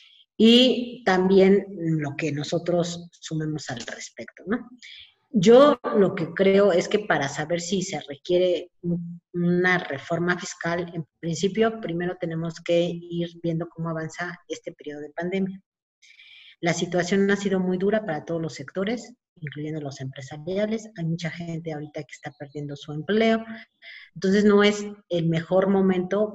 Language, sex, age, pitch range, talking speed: Spanish, female, 40-59, 155-185 Hz, 145 wpm